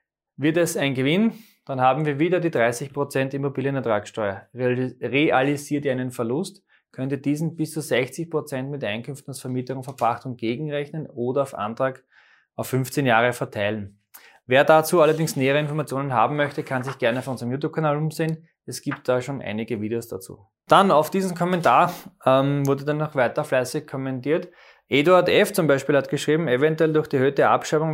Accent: German